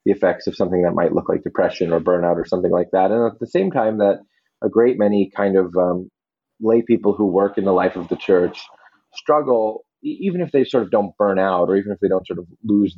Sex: male